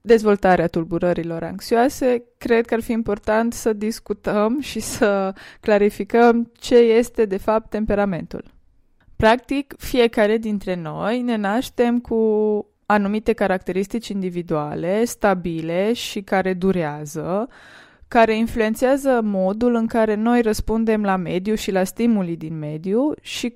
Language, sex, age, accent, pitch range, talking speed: Romanian, female, 20-39, native, 190-235 Hz, 120 wpm